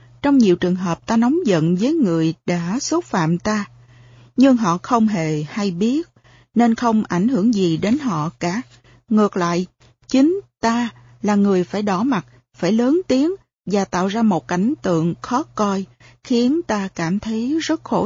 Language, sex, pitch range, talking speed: Vietnamese, female, 170-245 Hz, 175 wpm